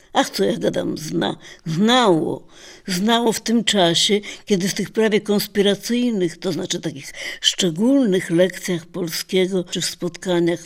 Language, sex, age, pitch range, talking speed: Polish, female, 60-79, 170-195 Hz, 135 wpm